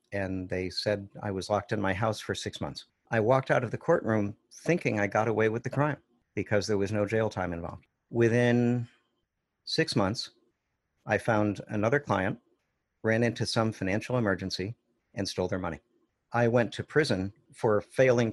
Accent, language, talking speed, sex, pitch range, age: American, English, 175 wpm, male, 95-115 Hz, 50-69